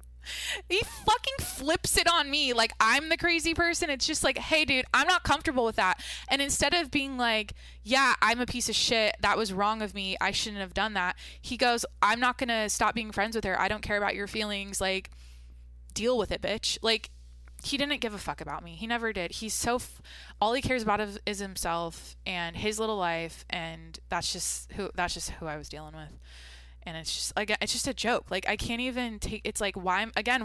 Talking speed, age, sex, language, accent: 225 wpm, 20-39, female, English, American